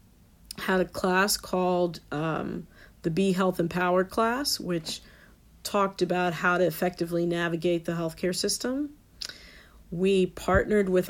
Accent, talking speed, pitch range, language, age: American, 125 wpm, 170-185 Hz, English, 50-69